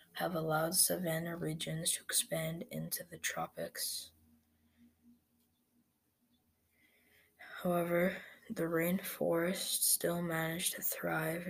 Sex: female